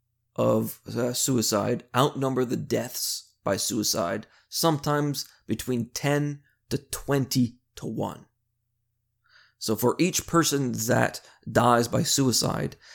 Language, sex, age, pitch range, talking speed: English, male, 30-49, 115-145 Hz, 100 wpm